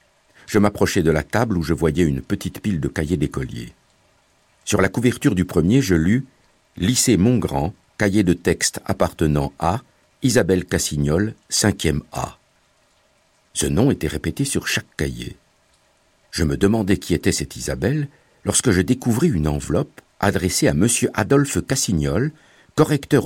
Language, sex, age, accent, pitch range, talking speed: French, male, 60-79, French, 85-130 Hz, 150 wpm